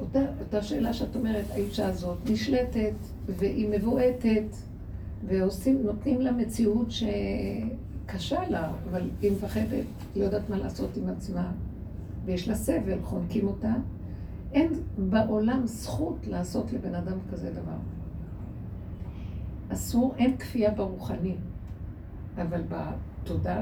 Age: 50-69